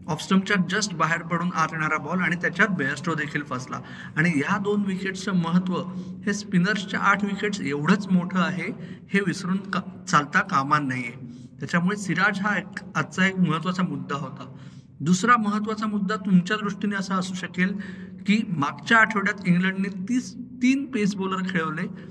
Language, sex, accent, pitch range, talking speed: Marathi, male, native, 180-215 Hz, 150 wpm